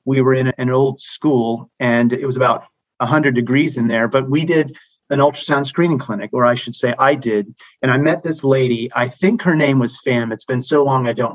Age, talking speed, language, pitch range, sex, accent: 40-59, 235 wpm, English, 115-140 Hz, male, American